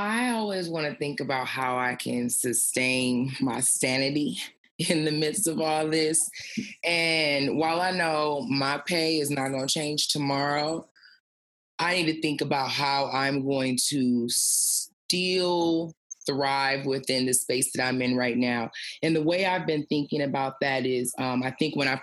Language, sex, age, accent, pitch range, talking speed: English, female, 20-39, American, 135-170 Hz, 170 wpm